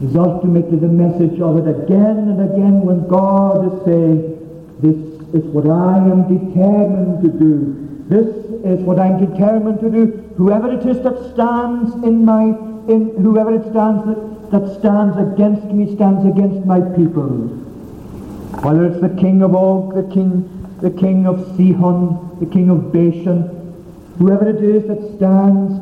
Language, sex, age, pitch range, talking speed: English, male, 50-69, 155-205 Hz, 160 wpm